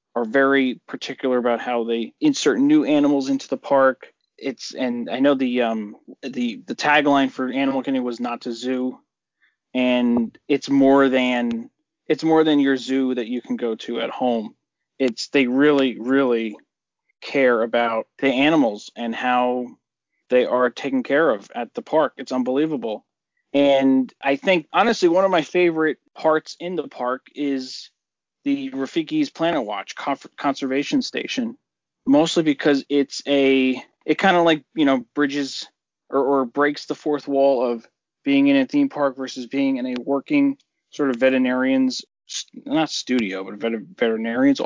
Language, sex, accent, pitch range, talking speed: English, male, American, 130-170 Hz, 160 wpm